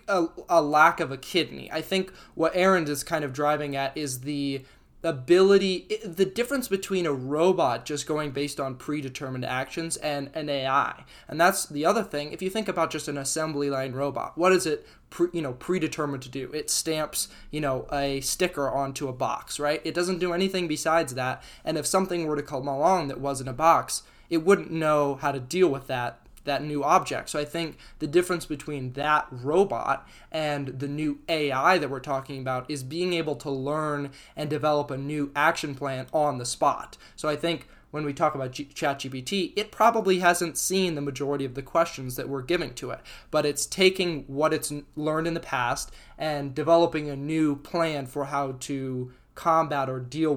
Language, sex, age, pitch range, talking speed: English, male, 20-39, 140-165 Hz, 200 wpm